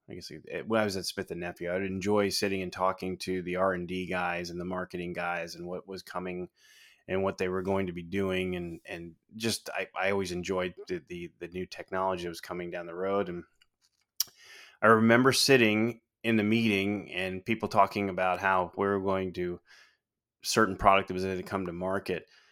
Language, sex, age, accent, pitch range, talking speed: English, male, 20-39, American, 90-105 Hz, 215 wpm